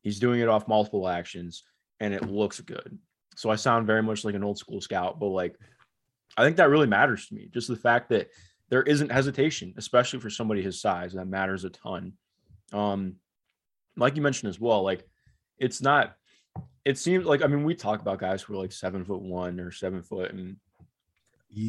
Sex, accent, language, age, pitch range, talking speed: male, American, English, 20-39, 95-120 Hz, 210 wpm